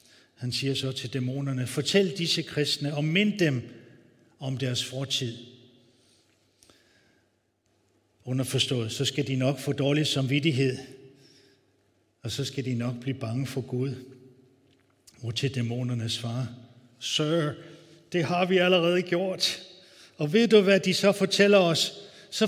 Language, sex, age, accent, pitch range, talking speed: Danish, male, 60-79, native, 125-165 Hz, 135 wpm